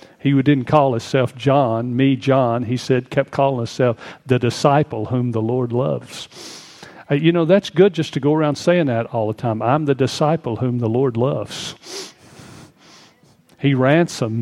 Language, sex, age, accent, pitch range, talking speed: English, male, 50-69, American, 125-150 Hz, 170 wpm